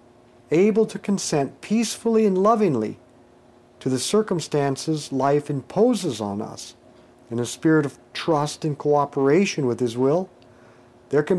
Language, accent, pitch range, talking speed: English, American, 120-175 Hz, 130 wpm